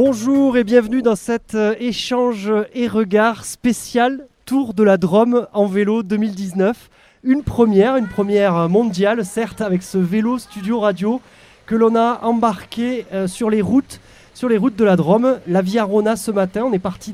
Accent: French